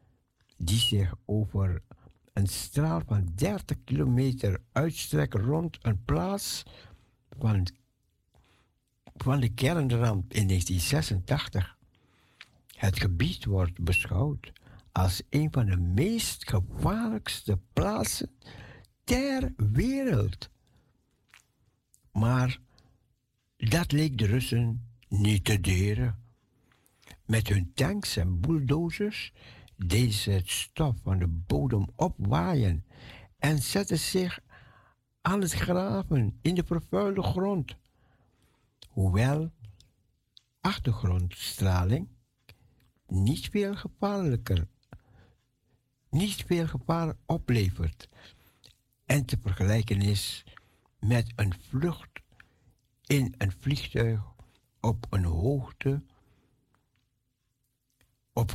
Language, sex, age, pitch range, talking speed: Dutch, male, 60-79, 100-135 Hz, 80 wpm